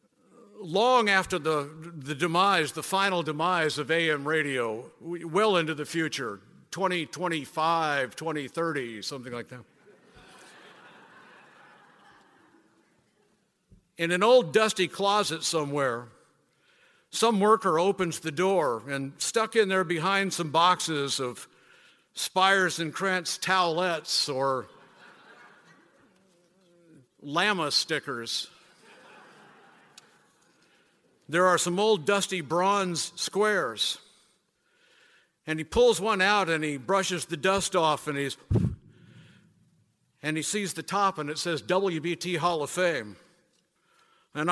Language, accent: English, American